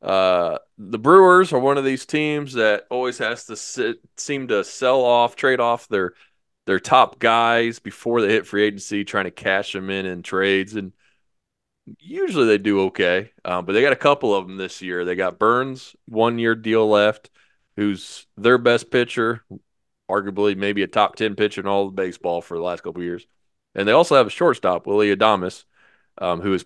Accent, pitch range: American, 95-120 Hz